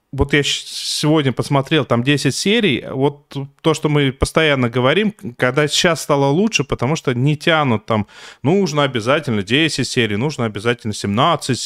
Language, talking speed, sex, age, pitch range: Russian, 150 wpm, male, 30-49, 120-160 Hz